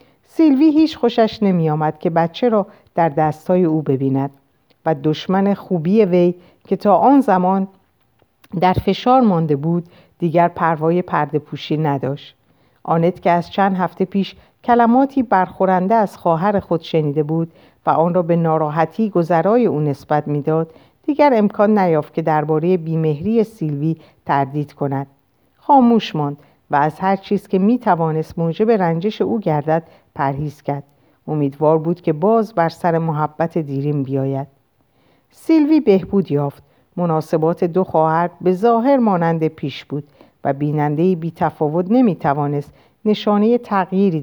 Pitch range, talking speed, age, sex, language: 150-195 Hz, 140 wpm, 50-69, female, Persian